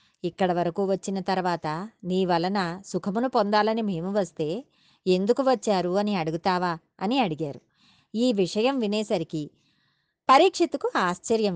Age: 20-39